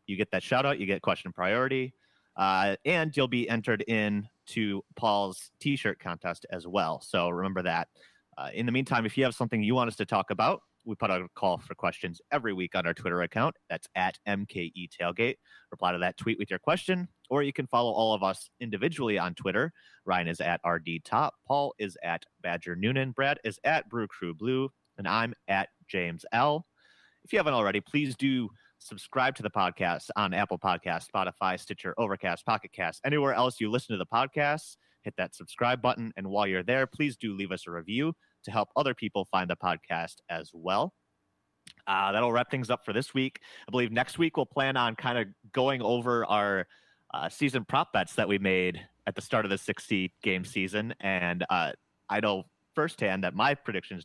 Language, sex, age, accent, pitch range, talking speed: English, male, 30-49, American, 95-130 Hz, 205 wpm